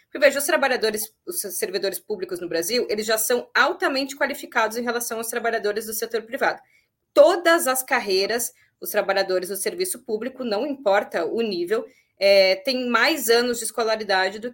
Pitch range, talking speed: 195-275 Hz, 165 wpm